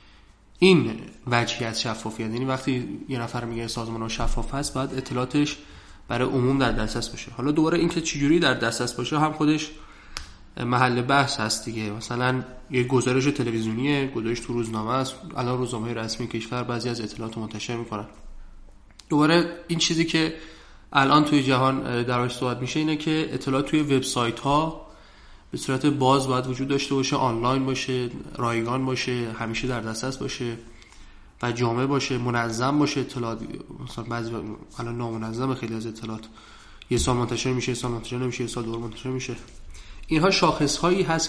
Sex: male